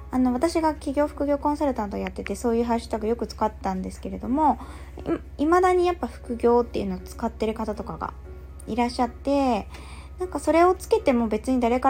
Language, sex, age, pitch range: Japanese, female, 20-39, 205-280 Hz